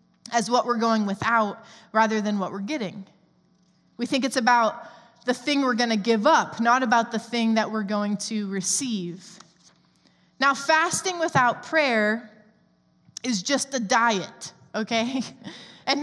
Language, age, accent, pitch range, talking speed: English, 20-39, American, 220-280 Hz, 150 wpm